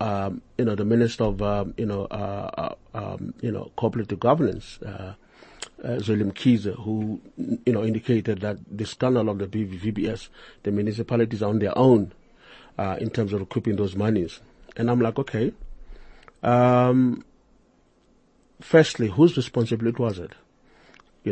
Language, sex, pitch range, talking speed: English, male, 105-125 Hz, 145 wpm